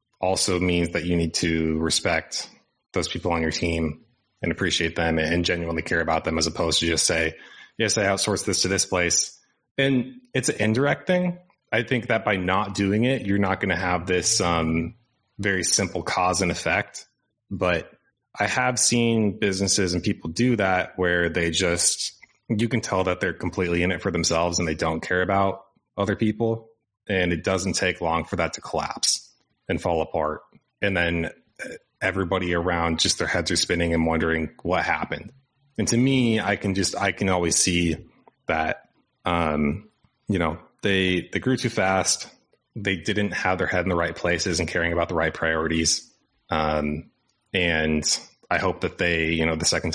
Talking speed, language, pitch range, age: 185 wpm, English, 85-105 Hz, 30-49